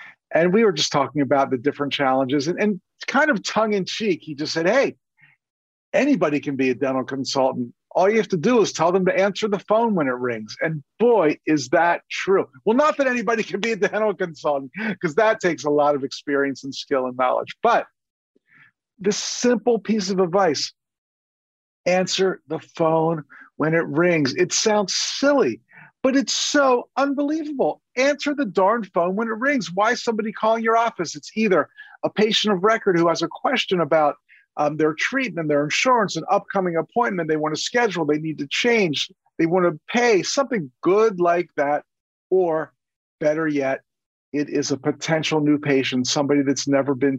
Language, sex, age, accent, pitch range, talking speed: English, male, 50-69, American, 145-220 Hz, 185 wpm